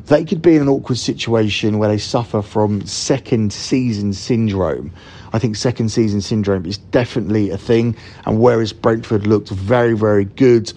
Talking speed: 165 wpm